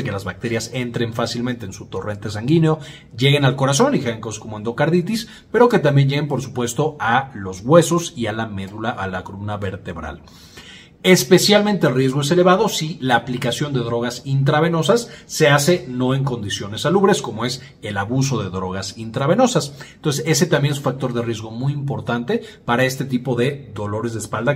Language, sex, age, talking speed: Spanish, male, 40-59, 180 wpm